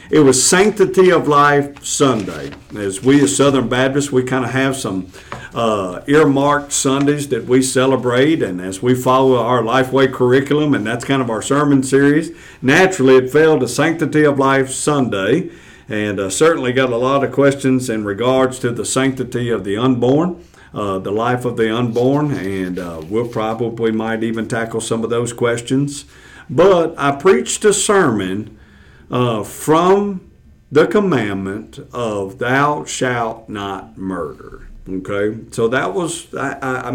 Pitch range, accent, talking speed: 120-165 Hz, American, 160 wpm